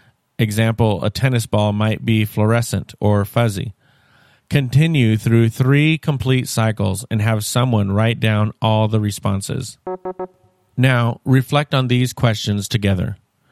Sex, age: male, 40-59